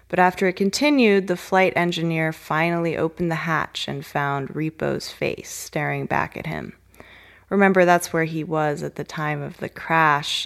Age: 20-39